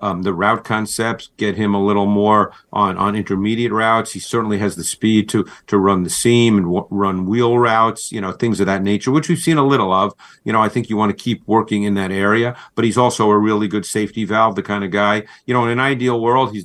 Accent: American